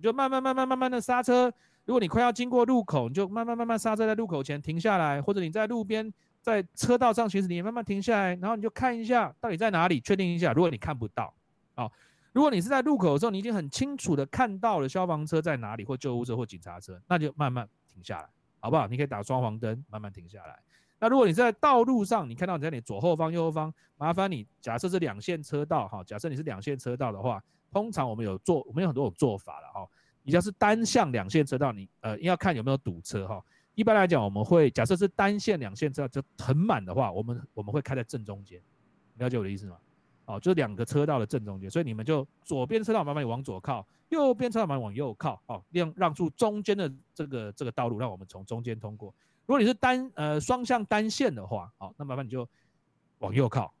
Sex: male